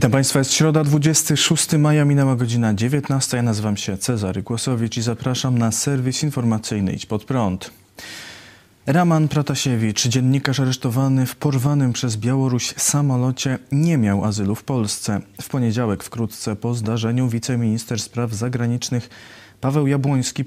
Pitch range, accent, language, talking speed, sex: 110-130 Hz, native, Polish, 135 wpm, male